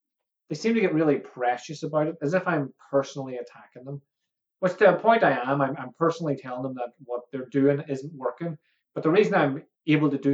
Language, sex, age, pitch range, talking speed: English, male, 30-49, 135-155 Hz, 220 wpm